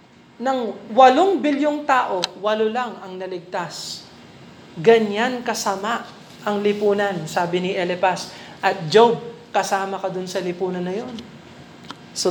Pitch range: 200-290 Hz